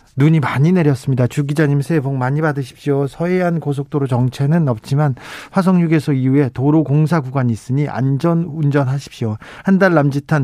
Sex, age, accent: male, 40-59, native